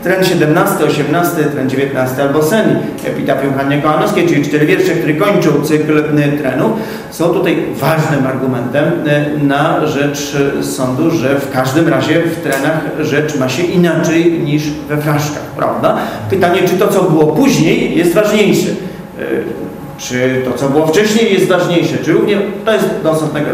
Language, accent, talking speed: Polish, native, 155 wpm